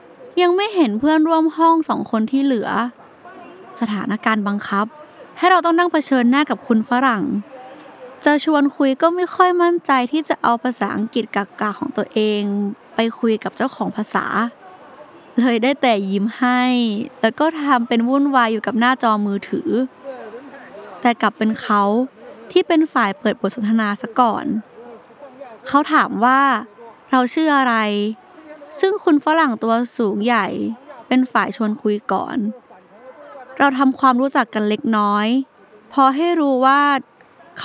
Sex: female